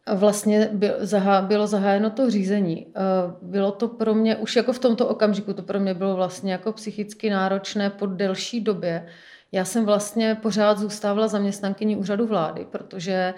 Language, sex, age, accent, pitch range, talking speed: Czech, female, 30-49, native, 185-205 Hz, 155 wpm